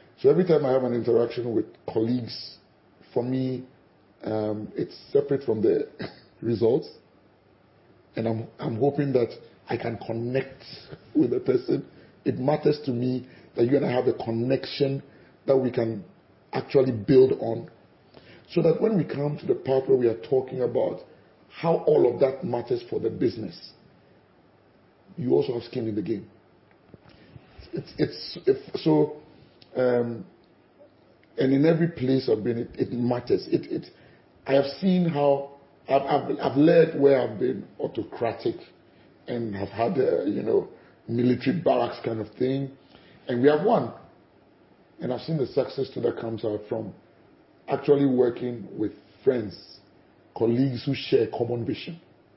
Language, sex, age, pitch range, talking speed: English, male, 40-59, 115-145 Hz, 155 wpm